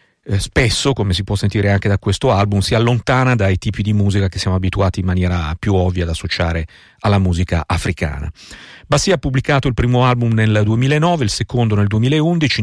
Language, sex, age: Italian, male, 50-69